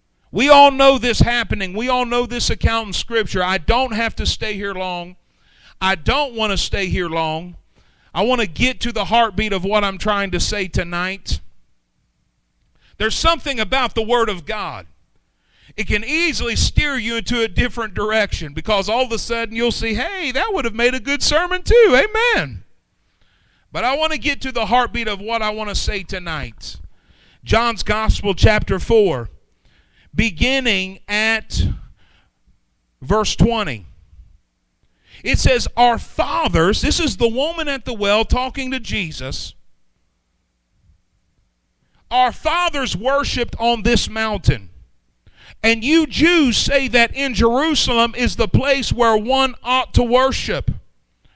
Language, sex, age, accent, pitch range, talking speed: English, male, 40-59, American, 180-250 Hz, 155 wpm